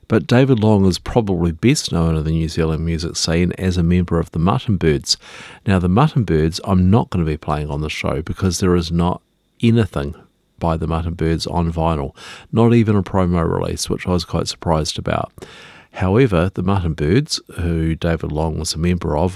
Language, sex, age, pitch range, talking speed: English, male, 50-69, 80-100 Hz, 205 wpm